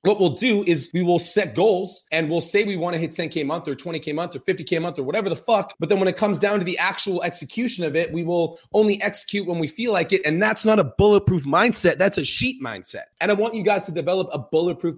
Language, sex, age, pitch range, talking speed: English, male, 30-49, 155-200 Hz, 280 wpm